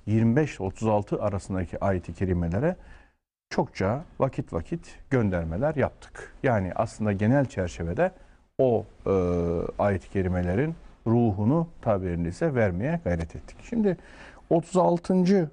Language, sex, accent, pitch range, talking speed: Turkish, male, native, 100-155 Hz, 95 wpm